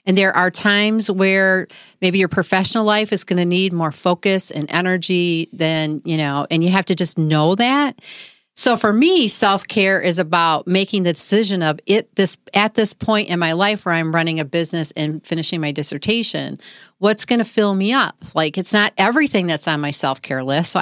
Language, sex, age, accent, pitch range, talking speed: English, female, 40-59, American, 160-205 Hz, 200 wpm